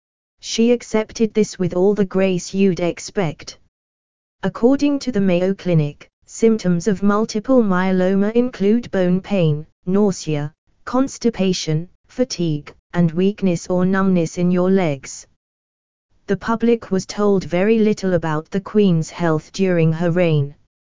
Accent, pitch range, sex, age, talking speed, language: British, 160-210 Hz, female, 20-39, 125 wpm, English